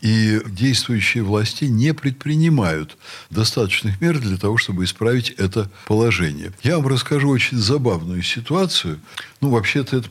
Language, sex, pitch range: Russian, male, 100-145 Hz